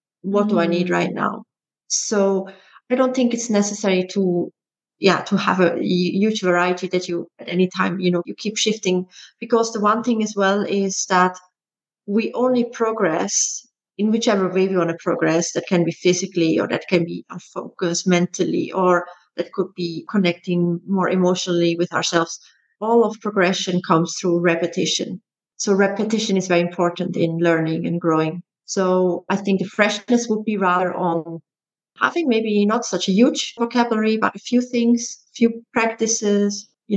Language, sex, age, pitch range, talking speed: English, female, 30-49, 175-210 Hz, 170 wpm